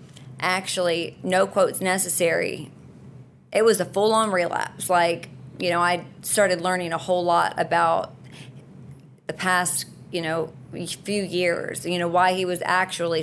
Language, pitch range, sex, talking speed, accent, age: English, 170-195 Hz, female, 145 wpm, American, 30-49